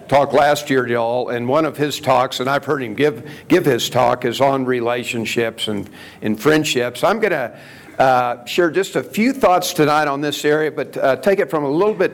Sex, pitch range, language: male, 120-150 Hz, English